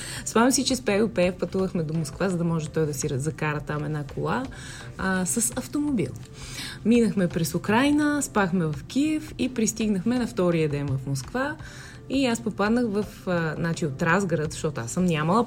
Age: 20-39